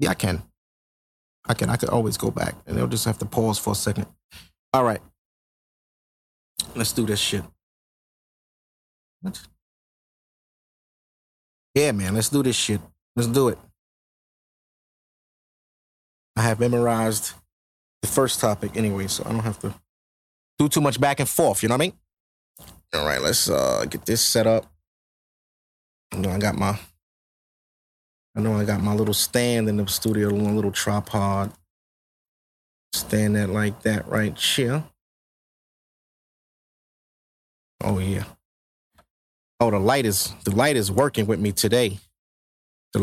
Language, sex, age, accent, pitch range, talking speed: English, male, 30-49, American, 85-115 Hz, 145 wpm